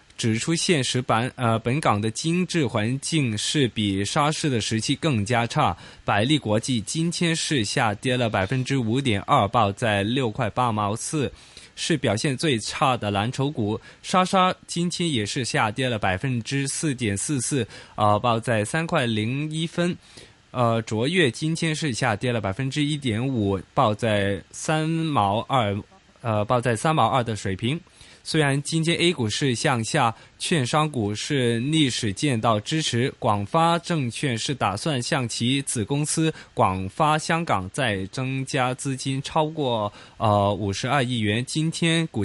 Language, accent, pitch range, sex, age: Chinese, native, 110-150 Hz, male, 20-39